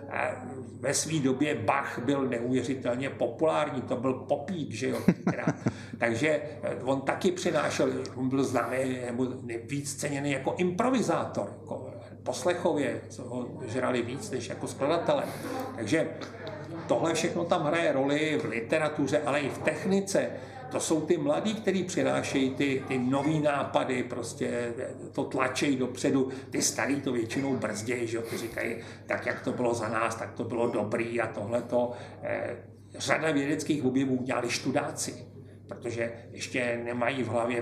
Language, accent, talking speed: Czech, native, 145 wpm